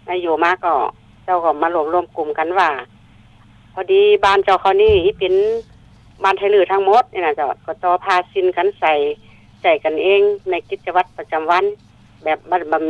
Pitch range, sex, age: 150-190 Hz, female, 60-79